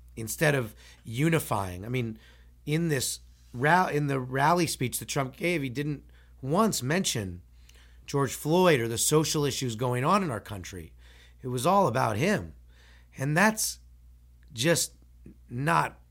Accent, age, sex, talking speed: American, 30-49, male, 145 wpm